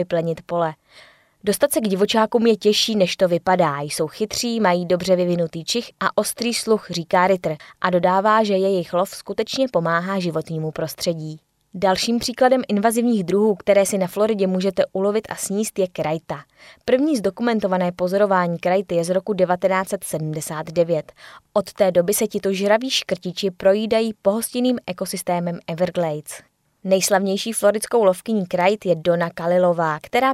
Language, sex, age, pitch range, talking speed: Czech, female, 20-39, 175-210 Hz, 140 wpm